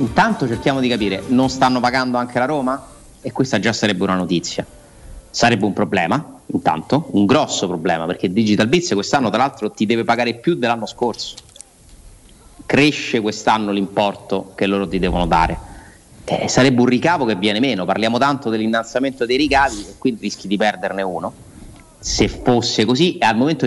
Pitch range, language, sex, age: 100-120 Hz, Italian, male, 30-49